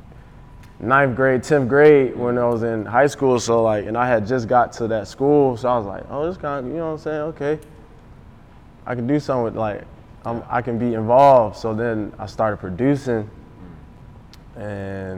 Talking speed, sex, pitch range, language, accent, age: 200 wpm, male, 105-130 Hz, English, American, 20-39